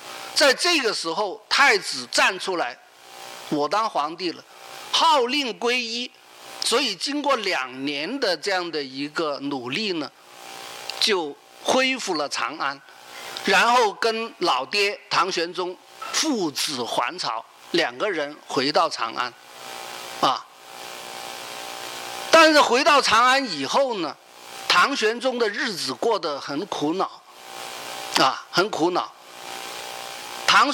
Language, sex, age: Chinese, male, 50-69